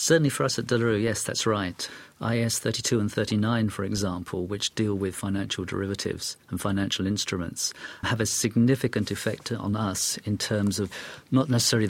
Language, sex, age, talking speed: English, male, 40-59, 175 wpm